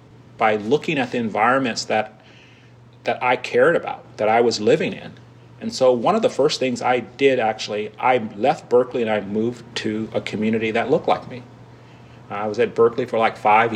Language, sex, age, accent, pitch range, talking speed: English, male, 40-59, American, 120-180 Hz, 195 wpm